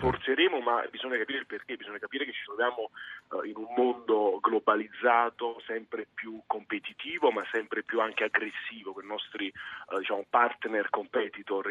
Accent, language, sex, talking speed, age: native, Italian, male, 160 wpm, 30-49